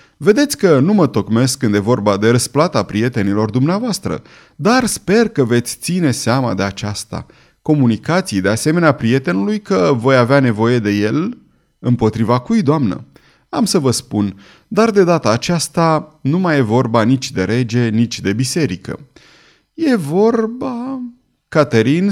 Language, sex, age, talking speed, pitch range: Romanian, male, 30-49, 145 wpm, 110-155 Hz